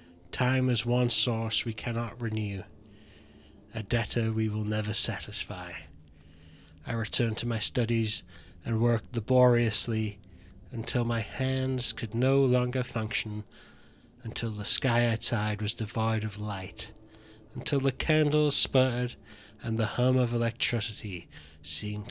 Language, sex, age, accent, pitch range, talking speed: English, male, 20-39, British, 105-120 Hz, 125 wpm